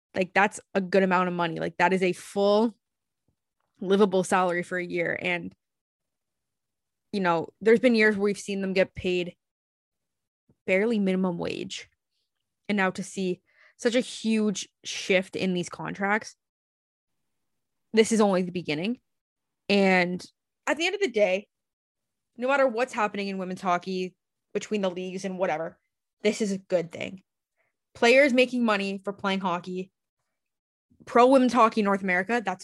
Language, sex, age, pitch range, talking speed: English, female, 20-39, 185-235 Hz, 155 wpm